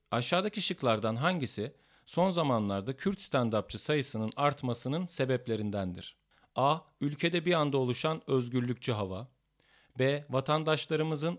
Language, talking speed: Turkish, 100 wpm